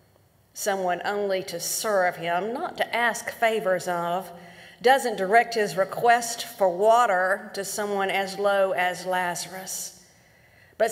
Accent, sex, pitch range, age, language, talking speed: American, female, 170-220 Hz, 50-69, English, 125 wpm